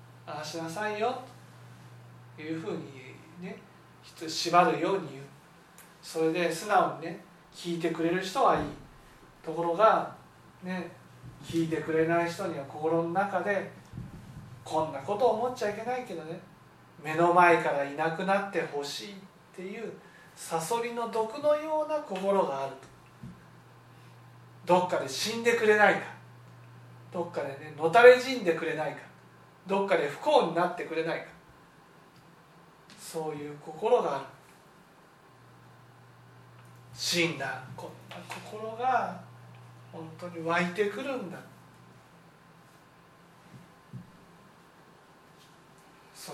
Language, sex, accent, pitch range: Japanese, male, native, 145-190 Hz